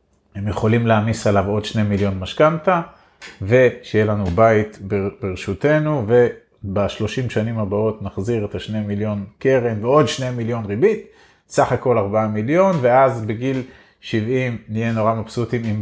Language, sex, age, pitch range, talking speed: Hebrew, male, 30-49, 105-130 Hz, 135 wpm